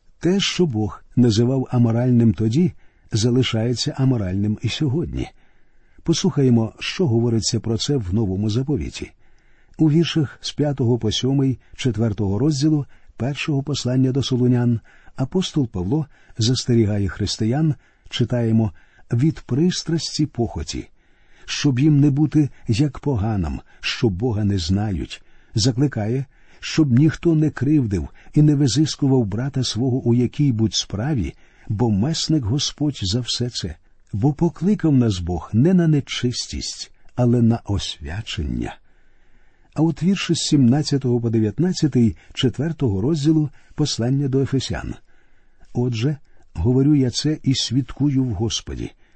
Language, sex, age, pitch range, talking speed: Ukrainian, male, 50-69, 110-145 Hz, 120 wpm